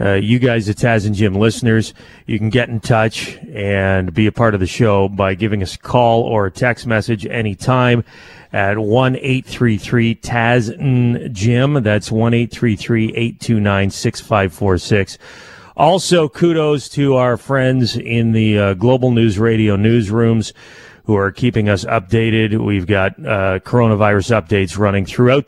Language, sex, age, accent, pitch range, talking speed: English, male, 30-49, American, 100-125 Hz, 135 wpm